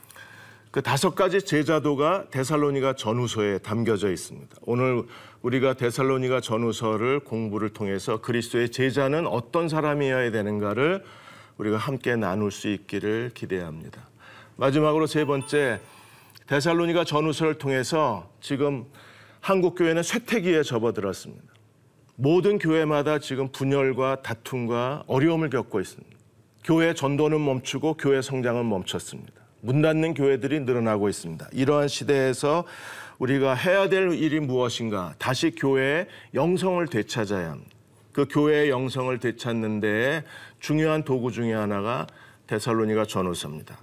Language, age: Korean, 40-59